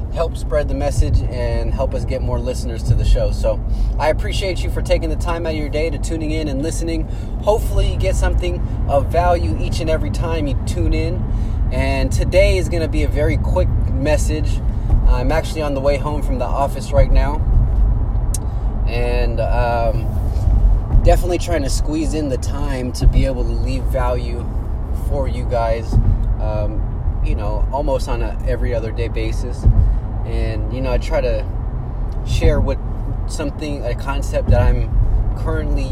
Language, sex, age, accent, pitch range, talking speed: English, male, 20-39, American, 95-120 Hz, 175 wpm